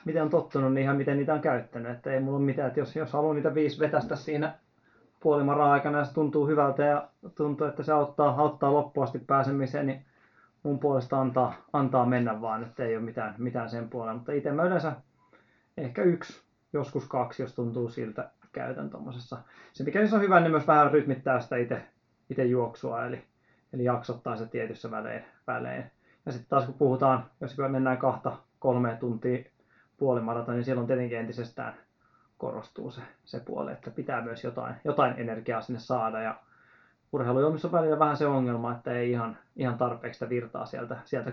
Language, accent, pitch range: Finnish, native, 120-145 Hz